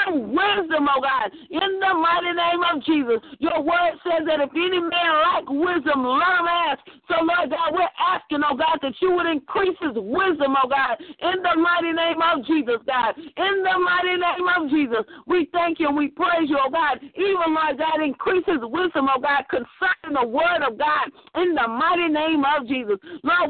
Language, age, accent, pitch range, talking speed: English, 50-69, American, 280-350 Hz, 195 wpm